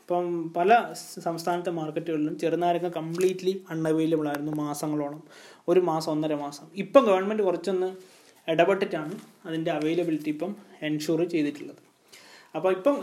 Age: 20-39